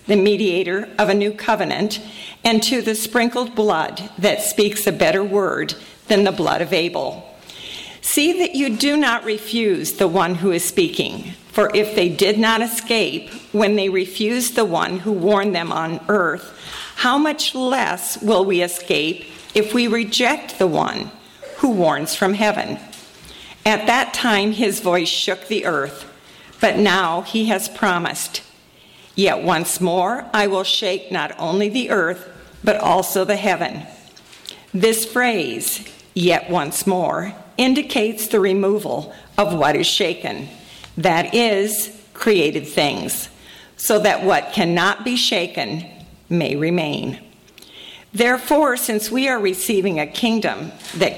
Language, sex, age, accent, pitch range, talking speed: English, female, 50-69, American, 185-225 Hz, 145 wpm